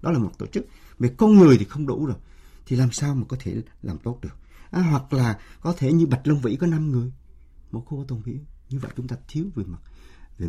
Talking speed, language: 255 wpm, Vietnamese